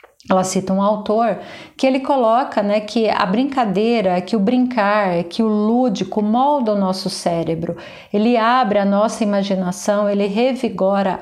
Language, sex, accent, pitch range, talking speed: Portuguese, female, Brazilian, 200-240 Hz, 150 wpm